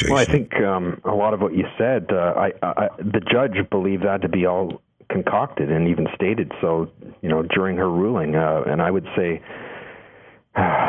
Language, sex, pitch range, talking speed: English, male, 80-95 Hz, 200 wpm